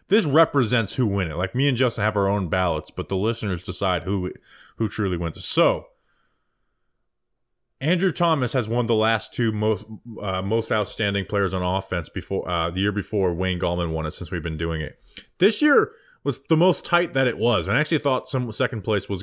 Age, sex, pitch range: 20-39, male, 100-145 Hz